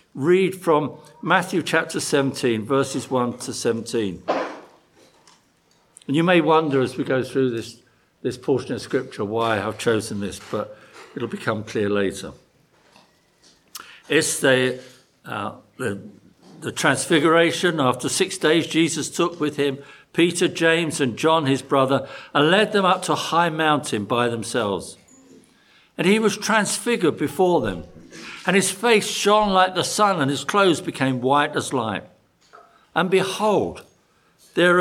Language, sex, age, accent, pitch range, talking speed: English, male, 60-79, British, 135-190 Hz, 145 wpm